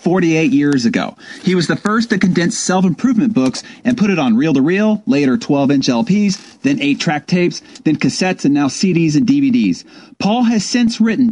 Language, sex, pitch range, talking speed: English, male, 175-255 Hz, 200 wpm